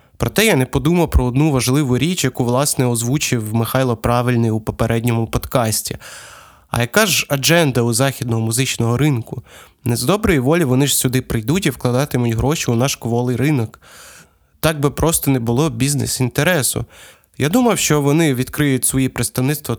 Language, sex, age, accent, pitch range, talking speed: Ukrainian, male, 20-39, native, 120-155 Hz, 160 wpm